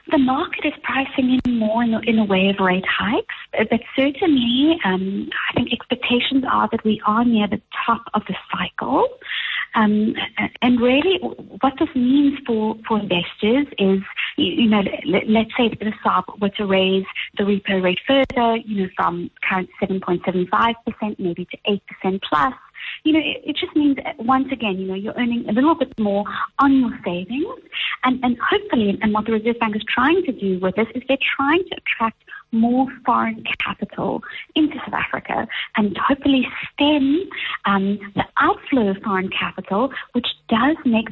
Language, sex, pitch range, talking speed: English, female, 205-270 Hz, 170 wpm